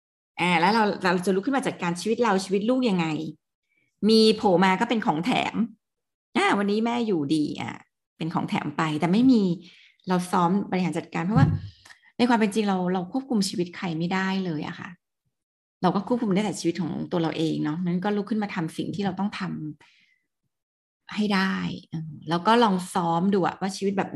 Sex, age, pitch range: female, 30-49, 165-210 Hz